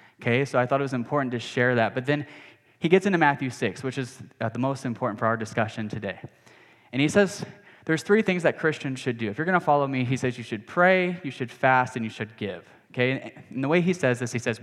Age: 10-29